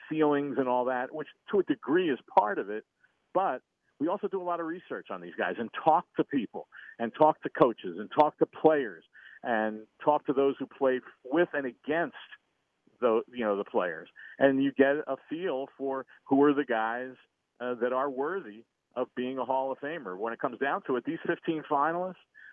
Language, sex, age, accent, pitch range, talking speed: English, male, 50-69, American, 120-145 Hz, 210 wpm